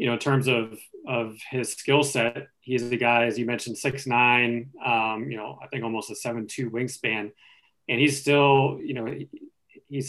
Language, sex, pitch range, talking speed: English, male, 120-135 Hz, 190 wpm